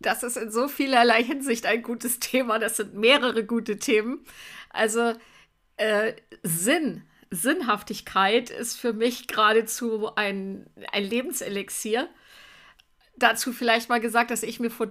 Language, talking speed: German, 130 wpm